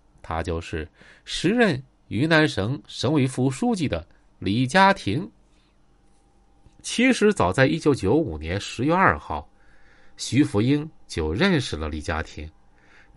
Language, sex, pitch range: Chinese, male, 95-160 Hz